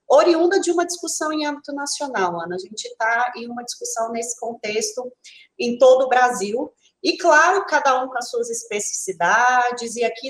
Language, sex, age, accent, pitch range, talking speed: Portuguese, female, 30-49, Brazilian, 200-260 Hz, 175 wpm